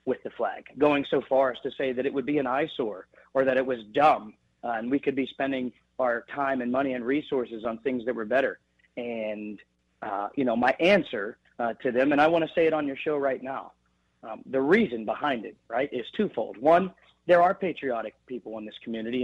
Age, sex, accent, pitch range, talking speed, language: 40-59, male, American, 110-140 Hz, 230 wpm, English